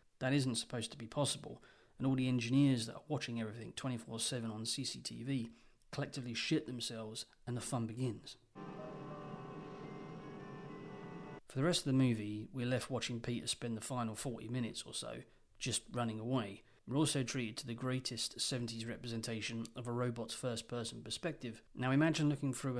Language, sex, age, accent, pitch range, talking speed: English, male, 30-49, British, 115-135 Hz, 160 wpm